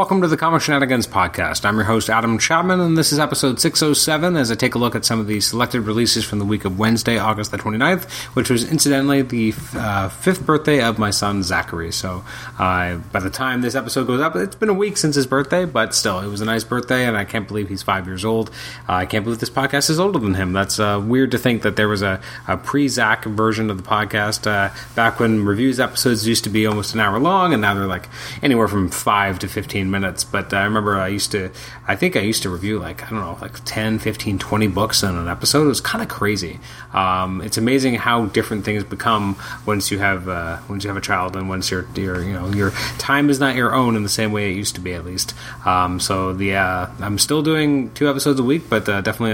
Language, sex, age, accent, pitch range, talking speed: English, male, 30-49, American, 100-130 Hz, 250 wpm